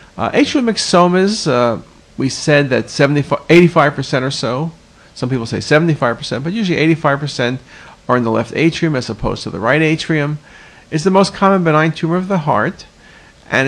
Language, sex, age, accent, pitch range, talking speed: English, male, 50-69, American, 125-160 Hz, 165 wpm